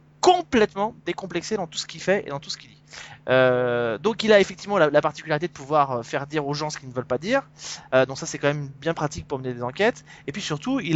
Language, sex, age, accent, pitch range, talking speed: French, male, 20-39, French, 150-195 Hz, 270 wpm